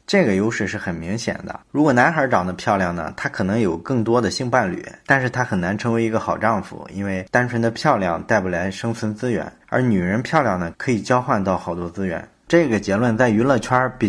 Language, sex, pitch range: Chinese, male, 95-125 Hz